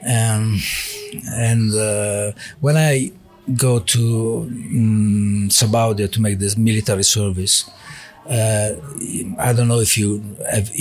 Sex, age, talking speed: male, 50-69, 115 wpm